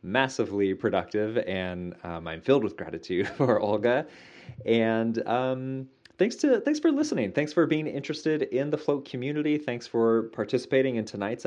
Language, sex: English, male